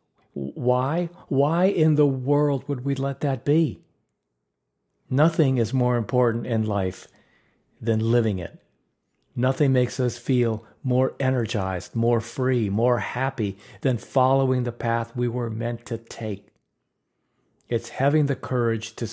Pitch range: 110-140 Hz